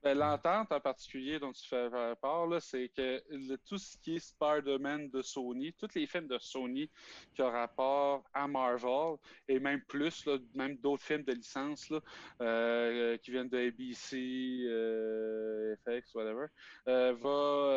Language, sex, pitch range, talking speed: English, male, 120-150 Hz, 150 wpm